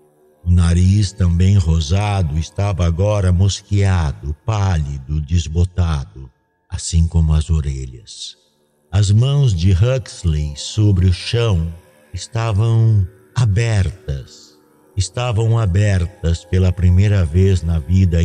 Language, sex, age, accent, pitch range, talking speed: Portuguese, male, 60-79, Brazilian, 80-105 Hz, 95 wpm